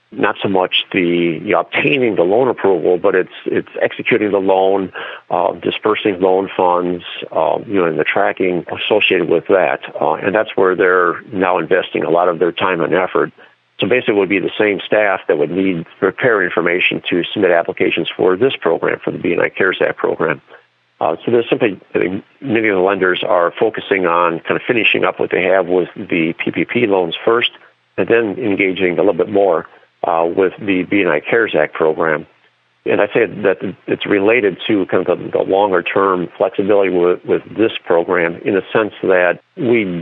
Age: 50-69